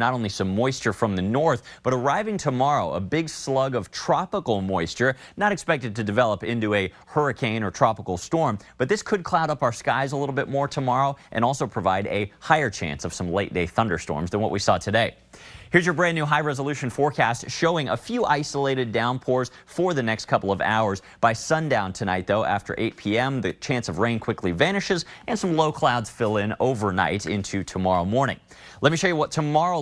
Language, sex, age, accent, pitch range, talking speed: English, male, 30-49, American, 100-150 Hz, 200 wpm